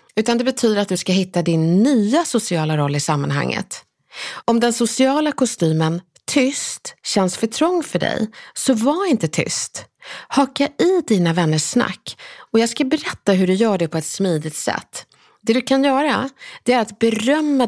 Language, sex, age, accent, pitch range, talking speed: Swedish, female, 30-49, native, 180-260 Hz, 175 wpm